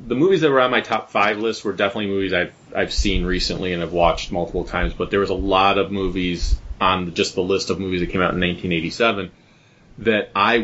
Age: 30-49